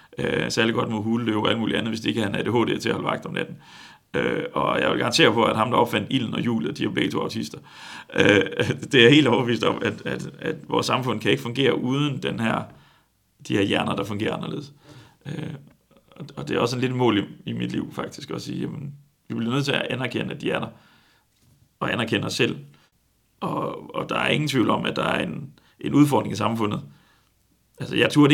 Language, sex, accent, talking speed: Danish, male, native, 230 wpm